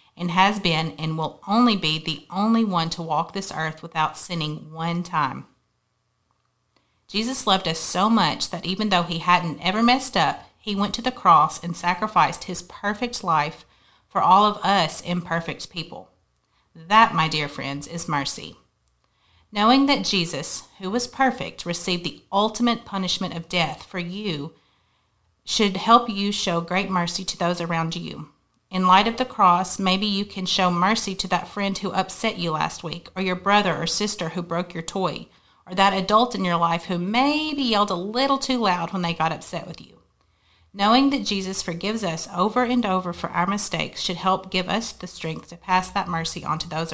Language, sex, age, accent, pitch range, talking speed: English, female, 40-59, American, 170-205 Hz, 190 wpm